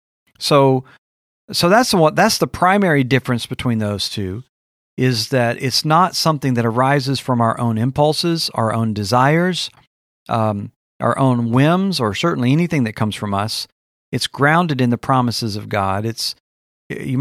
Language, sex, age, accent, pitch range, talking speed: English, male, 40-59, American, 105-135 Hz, 155 wpm